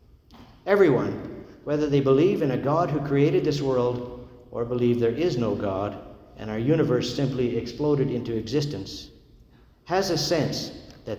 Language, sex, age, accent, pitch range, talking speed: English, male, 50-69, American, 115-140 Hz, 150 wpm